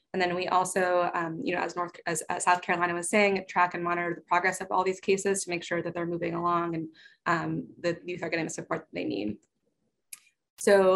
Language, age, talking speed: English, 20-39, 235 wpm